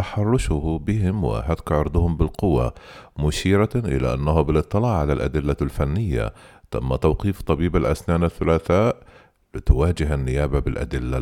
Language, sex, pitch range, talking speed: Arabic, male, 75-100 Hz, 105 wpm